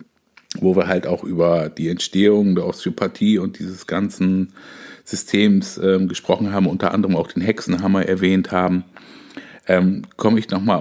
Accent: German